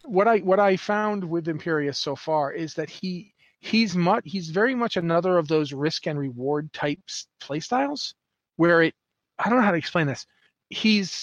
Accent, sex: American, male